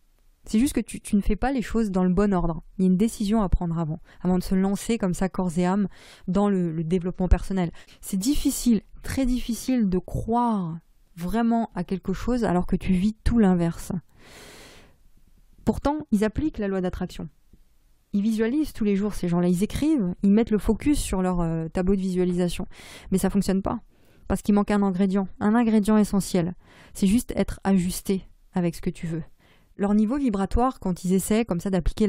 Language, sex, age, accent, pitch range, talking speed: French, female, 20-39, French, 185-220 Hz, 200 wpm